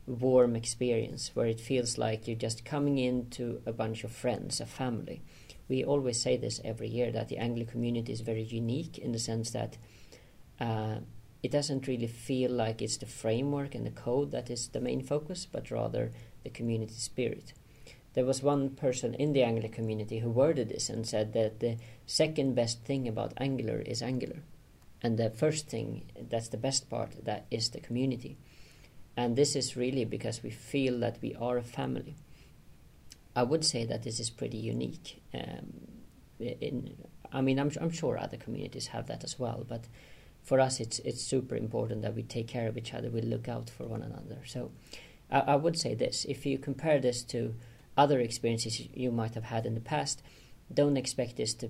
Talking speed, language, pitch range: 195 wpm, Hebrew, 115-130 Hz